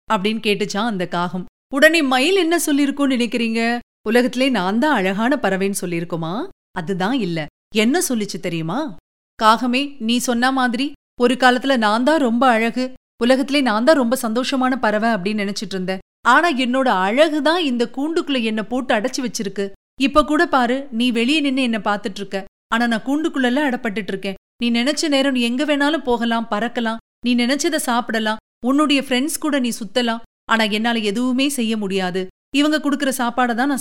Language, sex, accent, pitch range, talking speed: Tamil, female, native, 220-275 Hz, 155 wpm